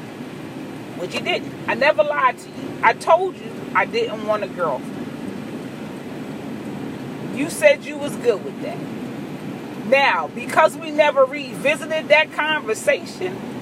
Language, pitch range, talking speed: English, 230-295 Hz, 130 wpm